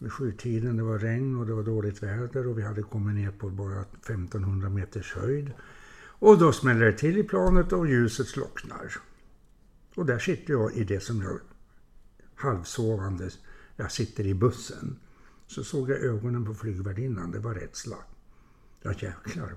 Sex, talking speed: male, 165 wpm